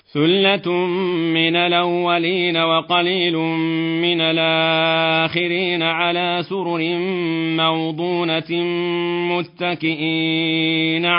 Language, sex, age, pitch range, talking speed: Arabic, male, 40-59, 160-175 Hz, 55 wpm